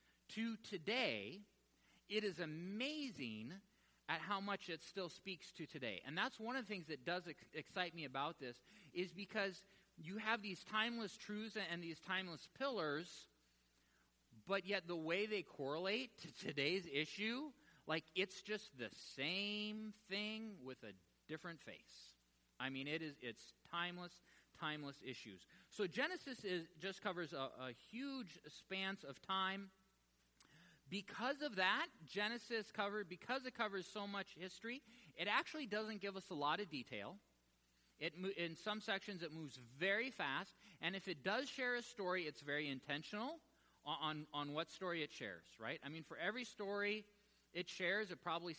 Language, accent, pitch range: English, American, 150-210 Hz